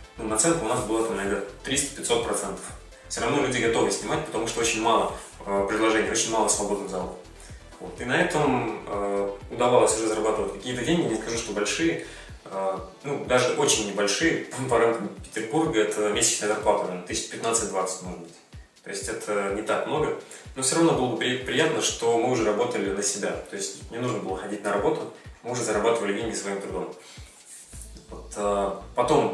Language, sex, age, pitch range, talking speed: Russian, male, 20-39, 100-115 Hz, 170 wpm